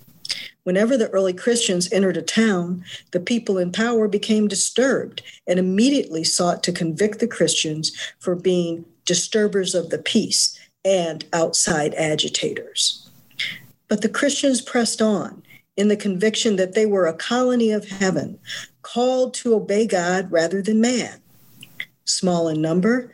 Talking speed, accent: 140 wpm, American